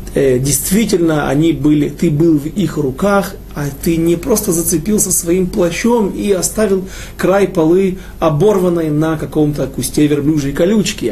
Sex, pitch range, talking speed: male, 150-200 Hz, 125 wpm